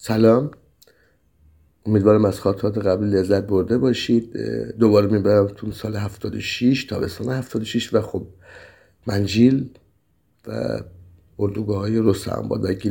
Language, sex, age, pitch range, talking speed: Persian, male, 50-69, 100-120 Hz, 100 wpm